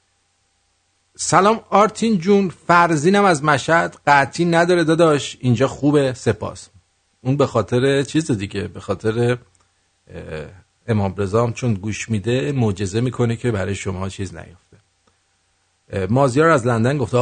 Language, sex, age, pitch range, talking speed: English, male, 50-69, 100-135 Hz, 120 wpm